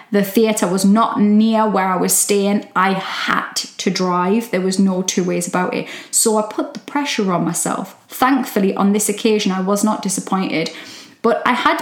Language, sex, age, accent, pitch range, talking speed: English, female, 10-29, British, 195-230 Hz, 195 wpm